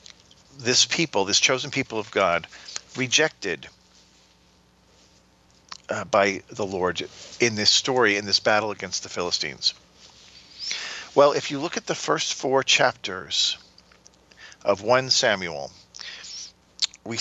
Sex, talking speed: male, 120 wpm